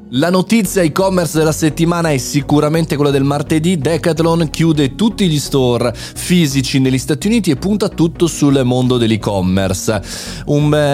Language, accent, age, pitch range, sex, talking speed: Italian, native, 30-49, 110-155 Hz, male, 145 wpm